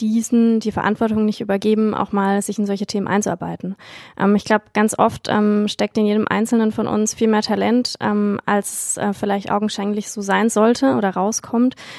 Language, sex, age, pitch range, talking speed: German, female, 20-39, 205-230 Hz, 180 wpm